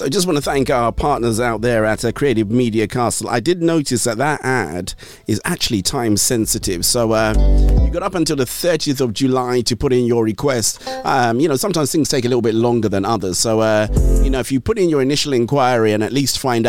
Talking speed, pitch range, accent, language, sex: 235 wpm, 110-130 Hz, British, English, male